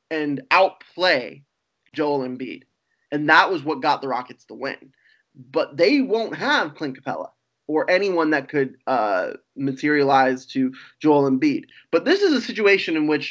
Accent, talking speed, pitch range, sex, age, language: American, 160 wpm, 140-215 Hz, male, 20-39, English